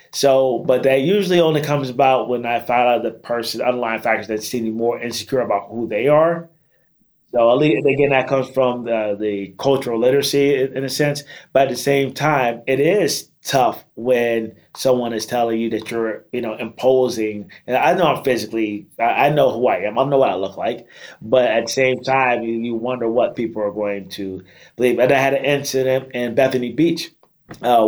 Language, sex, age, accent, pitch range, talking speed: English, male, 30-49, American, 115-135 Hz, 200 wpm